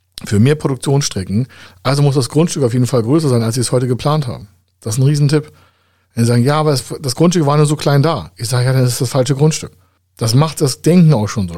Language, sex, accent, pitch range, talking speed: German, male, German, 110-145 Hz, 255 wpm